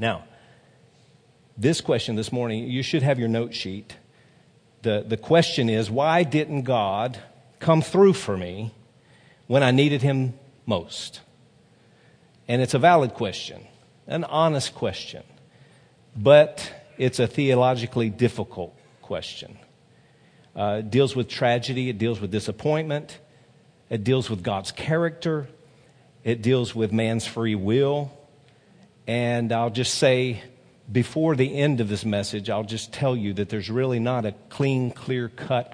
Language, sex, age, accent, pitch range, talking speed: English, male, 50-69, American, 110-135 Hz, 140 wpm